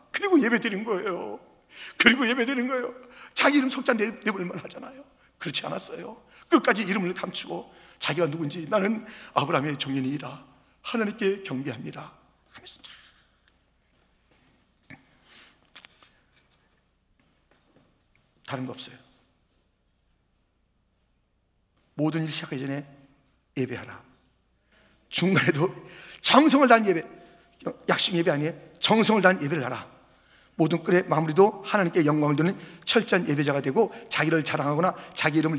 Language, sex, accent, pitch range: Korean, male, native, 140-200 Hz